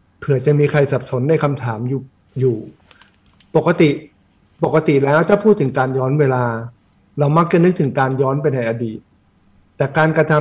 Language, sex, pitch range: Thai, male, 125-160 Hz